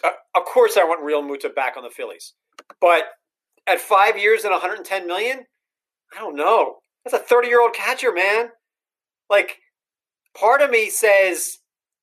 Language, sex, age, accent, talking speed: English, male, 40-59, American, 160 wpm